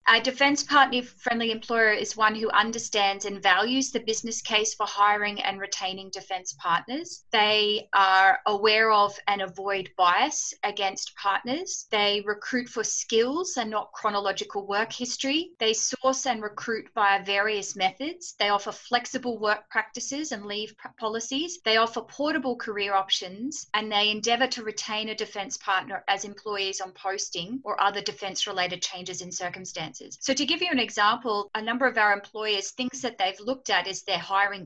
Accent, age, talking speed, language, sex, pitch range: Australian, 30-49, 165 wpm, English, female, 195-235 Hz